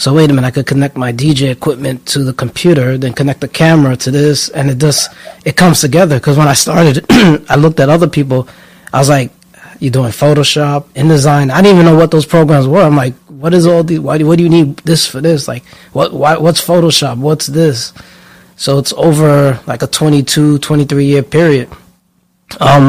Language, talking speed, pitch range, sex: English, 220 wpm, 130-150 Hz, male